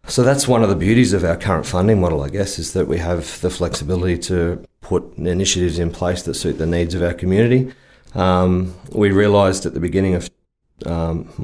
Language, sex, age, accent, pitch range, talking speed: English, male, 30-49, Australian, 85-100 Hz, 205 wpm